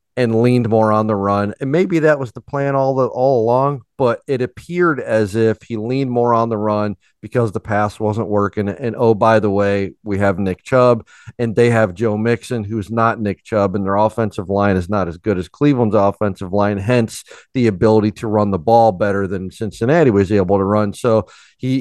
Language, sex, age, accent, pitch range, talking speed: English, male, 40-59, American, 105-130 Hz, 215 wpm